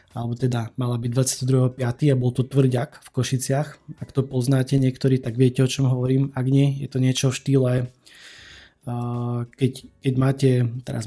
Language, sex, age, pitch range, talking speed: Slovak, male, 20-39, 125-140 Hz, 170 wpm